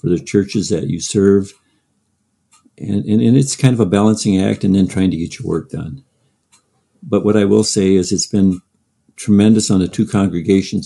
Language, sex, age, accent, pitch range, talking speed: English, male, 50-69, American, 90-105 Hz, 200 wpm